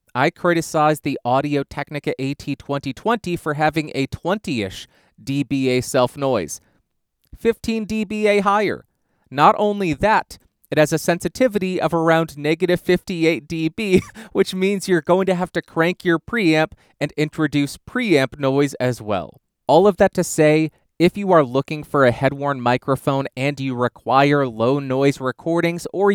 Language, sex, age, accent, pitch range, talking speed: English, male, 30-49, American, 125-165 Hz, 140 wpm